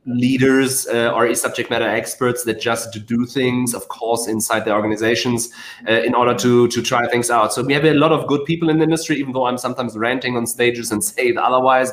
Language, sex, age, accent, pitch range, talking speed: English, male, 30-49, German, 125-165 Hz, 225 wpm